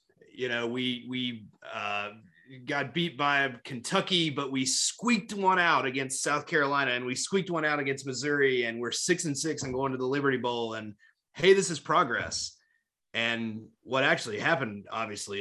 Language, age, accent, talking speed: English, 30-49, American, 175 wpm